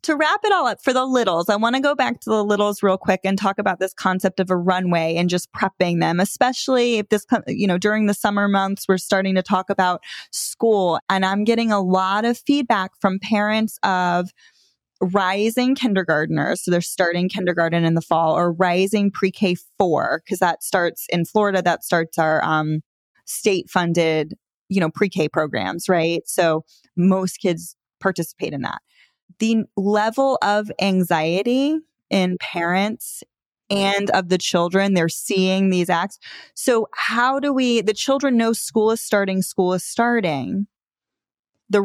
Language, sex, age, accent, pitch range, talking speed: English, female, 20-39, American, 180-225 Hz, 170 wpm